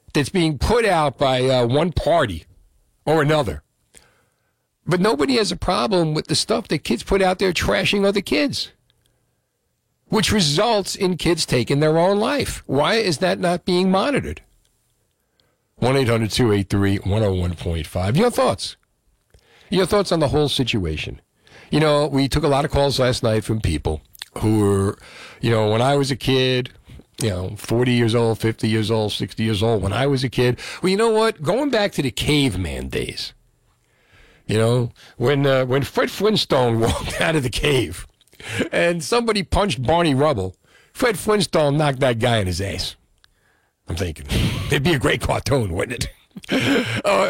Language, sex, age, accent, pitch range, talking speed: English, male, 50-69, American, 110-160 Hz, 165 wpm